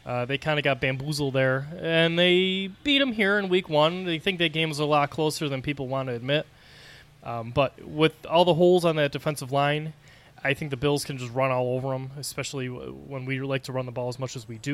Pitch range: 130-160 Hz